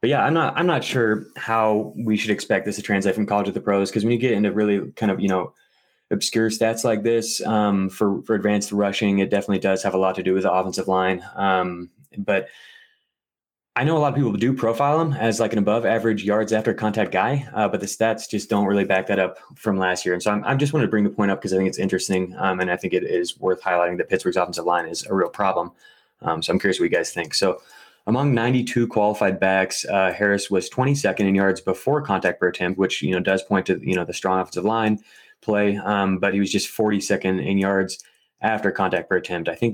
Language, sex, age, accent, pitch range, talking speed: English, male, 20-39, American, 95-110 Hz, 250 wpm